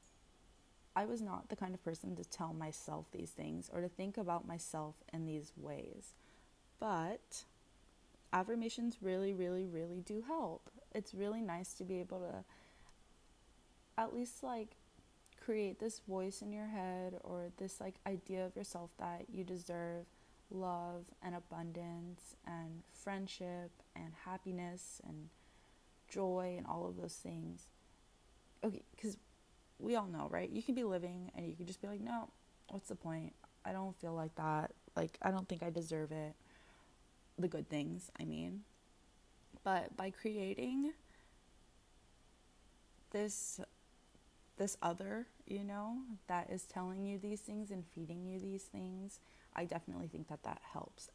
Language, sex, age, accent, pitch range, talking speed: English, female, 20-39, American, 170-205 Hz, 150 wpm